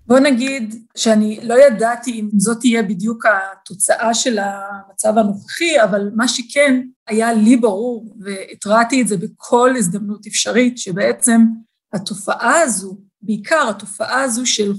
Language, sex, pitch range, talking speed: Hebrew, female, 205-250 Hz, 130 wpm